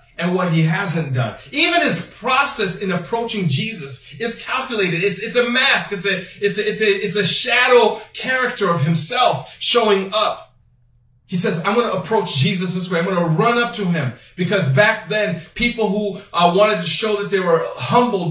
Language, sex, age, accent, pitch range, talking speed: English, male, 30-49, American, 155-220 Hz, 195 wpm